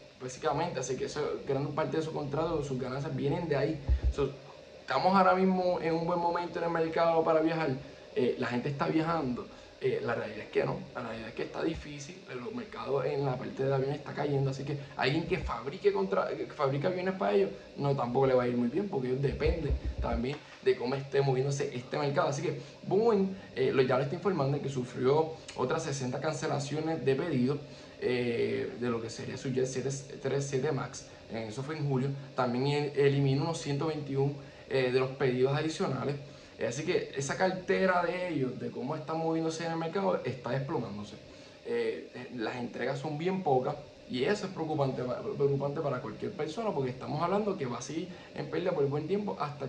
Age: 10-29